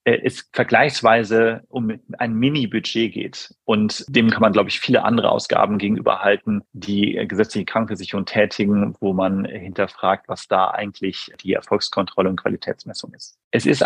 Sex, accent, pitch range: male, German, 105-135 Hz